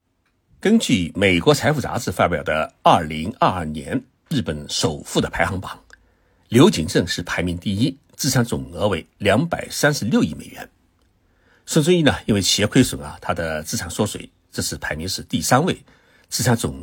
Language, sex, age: Chinese, male, 60-79